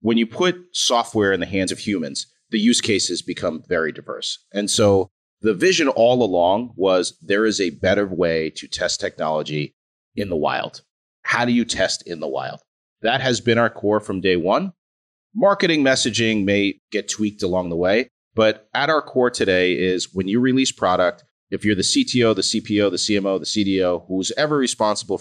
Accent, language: American, English